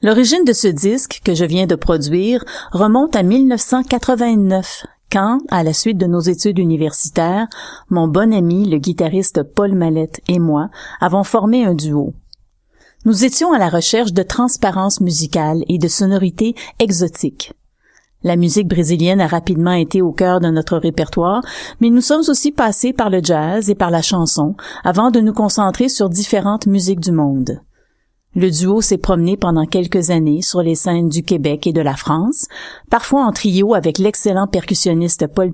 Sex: female